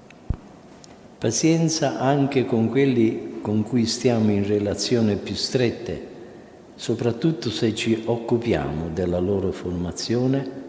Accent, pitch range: native, 95-125 Hz